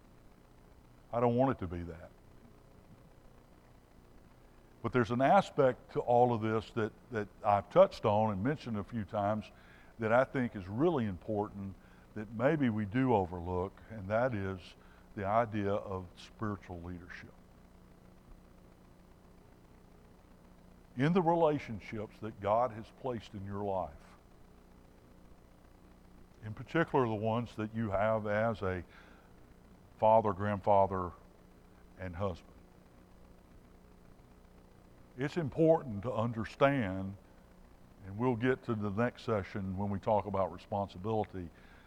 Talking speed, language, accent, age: 120 wpm, English, American, 60-79